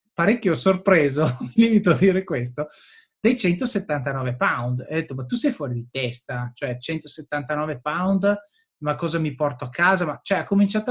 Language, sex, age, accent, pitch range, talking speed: Italian, male, 30-49, native, 135-195 Hz, 175 wpm